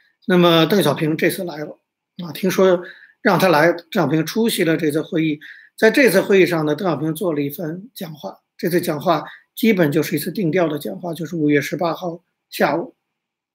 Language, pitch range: Chinese, 165-215 Hz